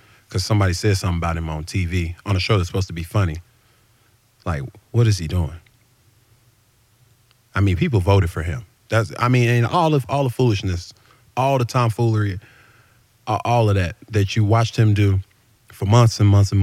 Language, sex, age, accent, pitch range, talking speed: English, male, 30-49, American, 100-120 Hz, 190 wpm